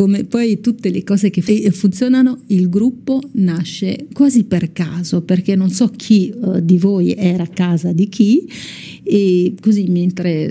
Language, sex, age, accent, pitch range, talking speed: Italian, female, 40-59, native, 175-220 Hz, 160 wpm